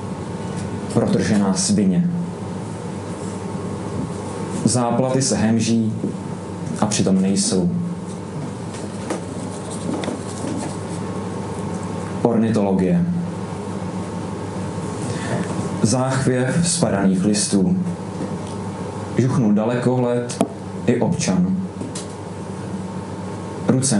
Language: Czech